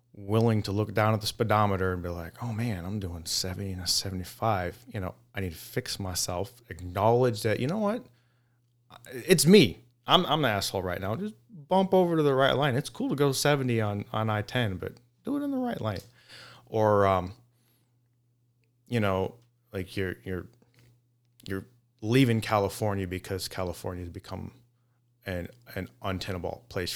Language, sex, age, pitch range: English, male, 30-49, 95-120 Hz